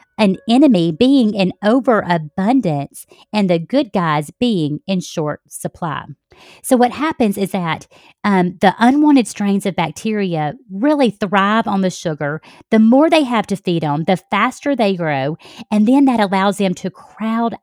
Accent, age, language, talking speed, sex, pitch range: American, 40-59, English, 160 wpm, female, 190-265 Hz